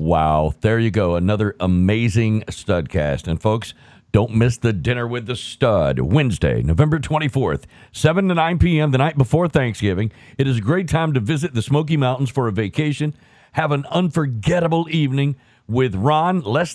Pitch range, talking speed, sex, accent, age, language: 115-160 Hz, 170 wpm, male, American, 50-69, English